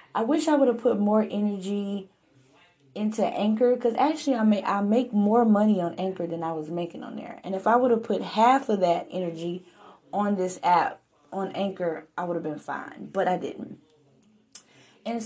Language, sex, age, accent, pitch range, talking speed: English, female, 20-39, American, 180-220 Hz, 195 wpm